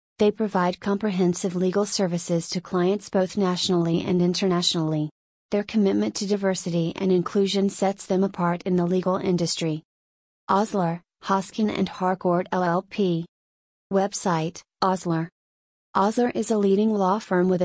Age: 30-49